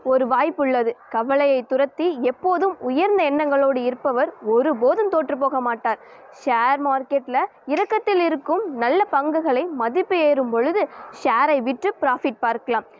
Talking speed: 120 wpm